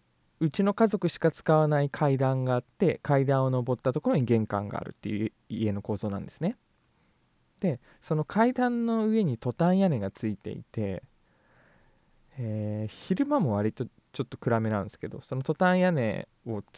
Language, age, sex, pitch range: Japanese, 20-39, male, 105-155 Hz